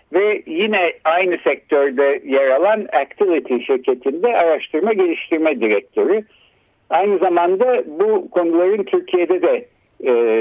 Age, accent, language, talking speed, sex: 60-79, native, Turkish, 105 wpm, male